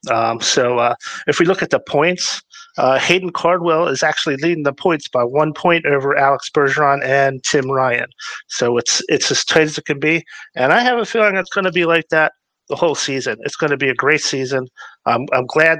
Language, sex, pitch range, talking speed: English, male, 135-170 Hz, 225 wpm